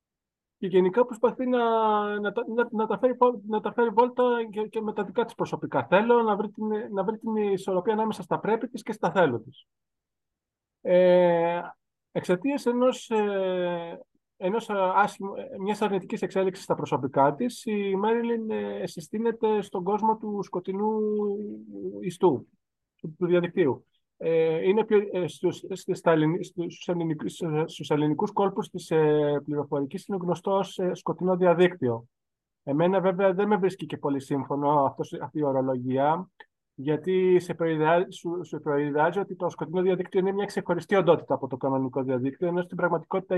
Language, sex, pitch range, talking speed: Greek, male, 160-210 Hz, 130 wpm